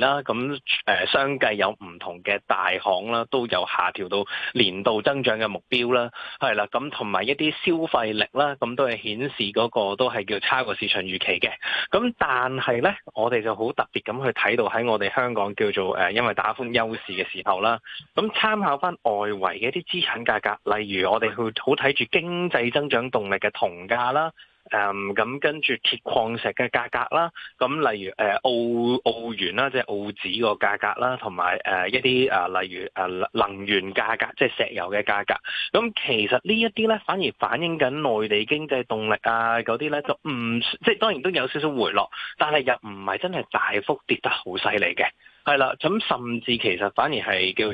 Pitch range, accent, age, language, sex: 105-145 Hz, native, 20-39, Chinese, male